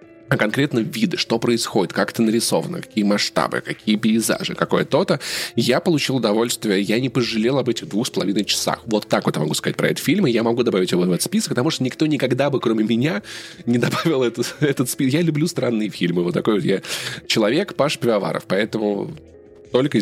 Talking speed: 205 wpm